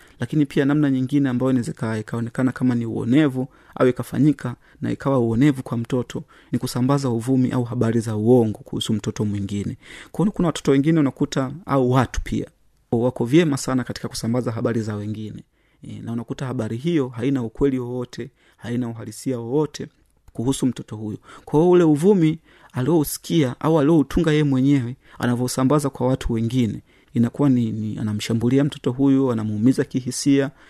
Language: Swahili